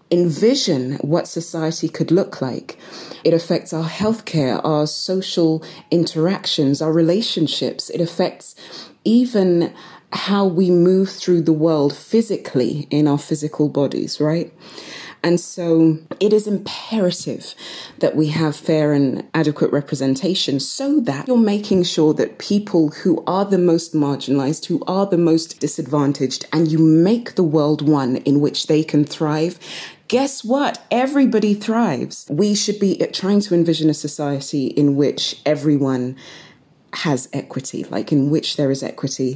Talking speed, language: 140 wpm, English